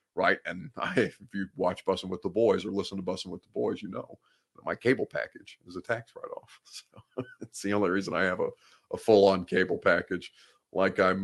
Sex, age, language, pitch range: male, 40-59, English, 100-150 Hz